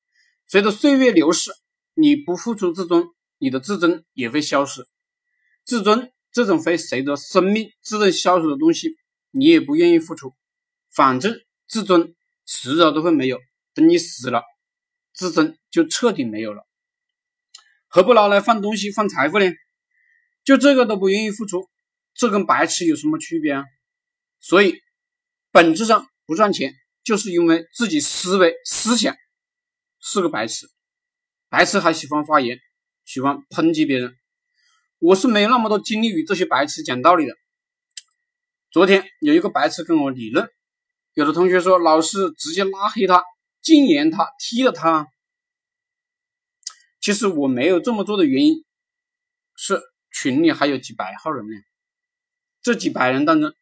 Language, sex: Chinese, male